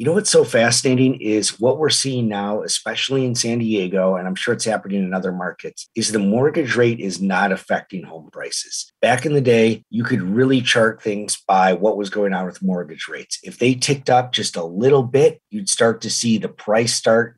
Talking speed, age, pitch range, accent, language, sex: 220 wpm, 30-49, 110-140 Hz, American, English, male